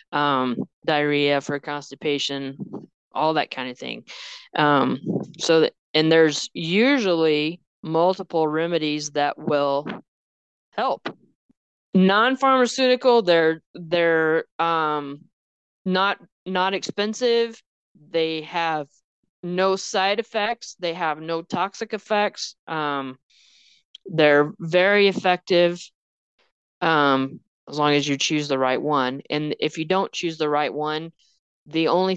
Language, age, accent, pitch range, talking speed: English, 20-39, American, 150-185 Hz, 110 wpm